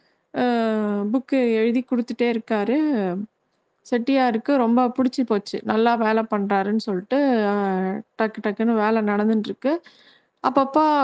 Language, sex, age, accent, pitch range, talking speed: Tamil, female, 20-39, native, 210-250 Hz, 100 wpm